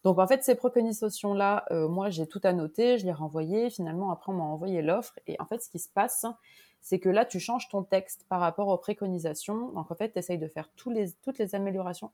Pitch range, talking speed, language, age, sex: 165-215 Hz, 240 wpm, French, 20-39, female